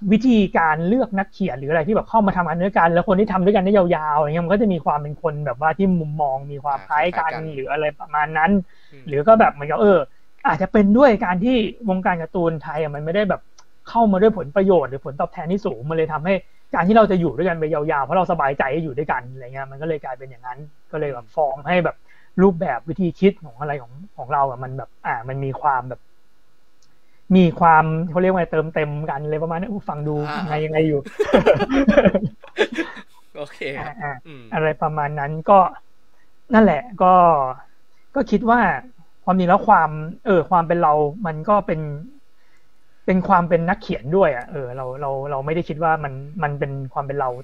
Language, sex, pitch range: Thai, male, 150-190 Hz